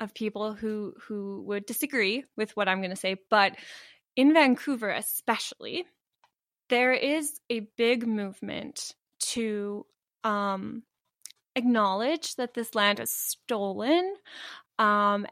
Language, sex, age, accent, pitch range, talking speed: English, female, 20-39, American, 210-260 Hz, 120 wpm